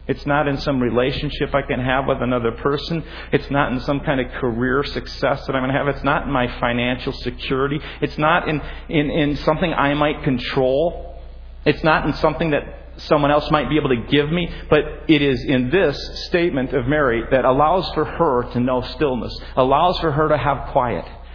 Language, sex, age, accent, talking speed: English, male, 40-59, American, 205 wpm